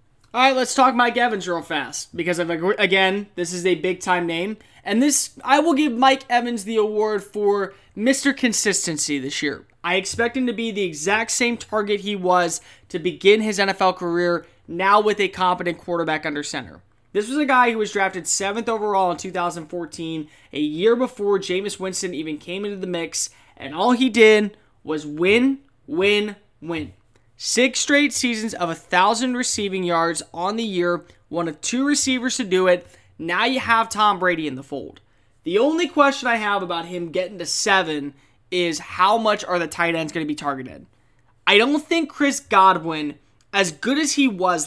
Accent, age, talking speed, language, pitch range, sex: American, 20-39, 185 wpm, English, 170-230 Hz, male